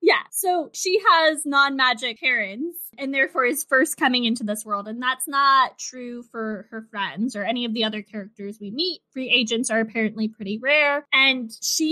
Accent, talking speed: American, 185 wpm